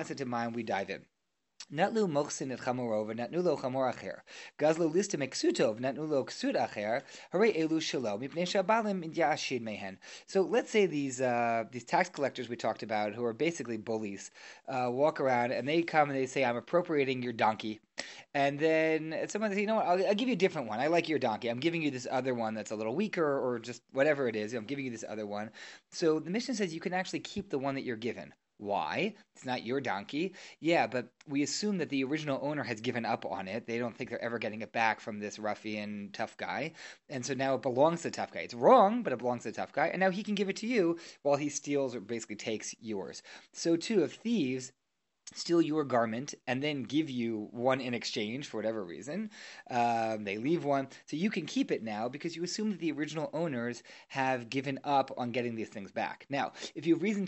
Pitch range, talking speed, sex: 120-170 Hz, 205 wpm, male